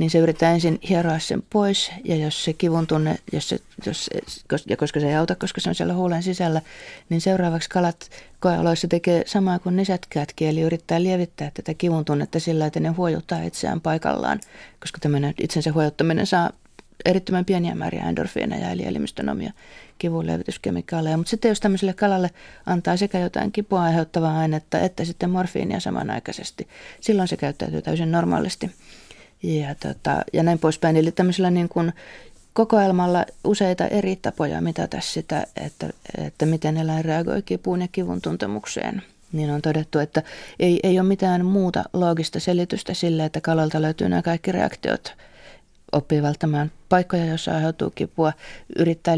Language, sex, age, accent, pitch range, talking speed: Finnish, female, 30-49, native, 155-185 Hz, 155 wpm